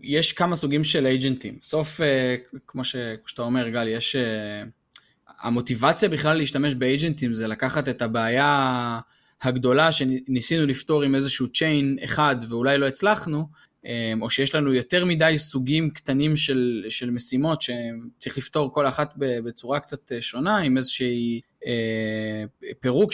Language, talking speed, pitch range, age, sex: Hebrew, 125 wpm, 125-155 Hz, 20-39, male